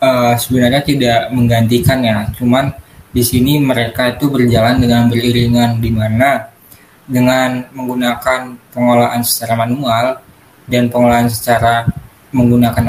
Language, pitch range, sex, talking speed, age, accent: Indonesian, 120-130 Hz, male, 105 wpm, 20-39, native